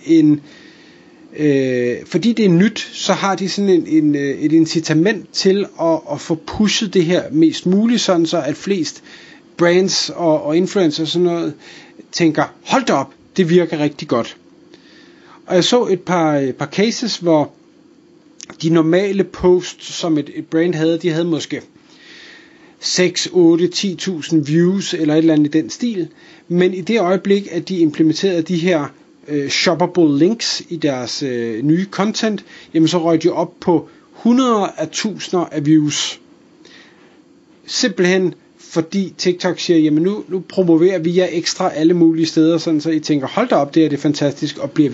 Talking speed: 165 wpm